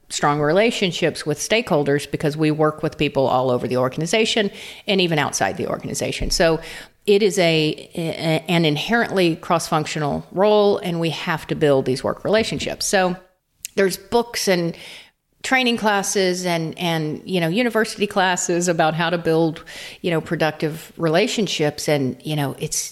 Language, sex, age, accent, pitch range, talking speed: English, female, 50-69, American, 155-195 Hz, 155 wpm